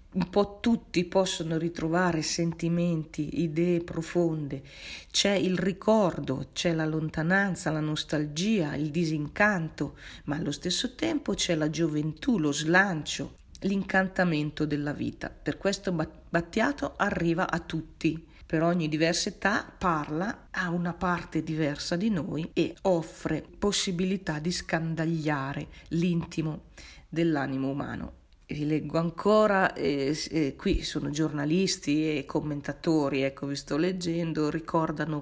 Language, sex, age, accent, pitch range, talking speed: Italian, female, 40-59, native, 155-190 Hz, 120 wpm